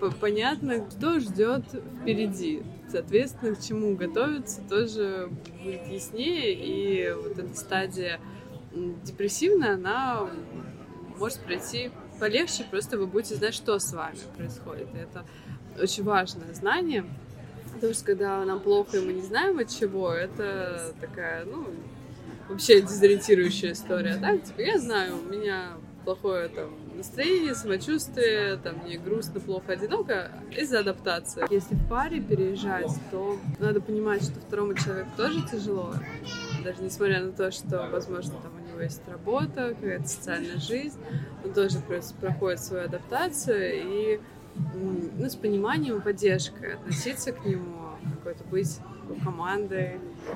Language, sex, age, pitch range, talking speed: Russian, female, 20-39, 180-220 Hz, 130 wpm